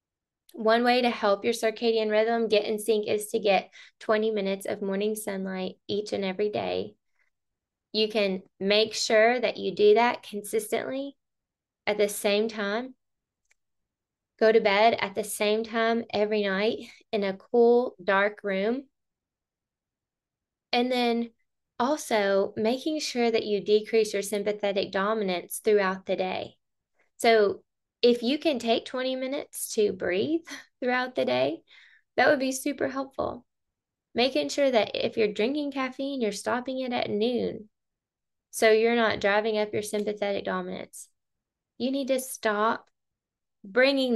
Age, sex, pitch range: 20-39, female, 205-240 Hz